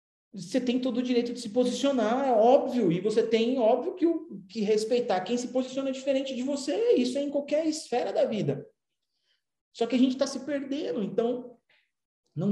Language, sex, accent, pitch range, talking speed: Portuguese, male, Brazilian, 215-280 Hz, 190 wpm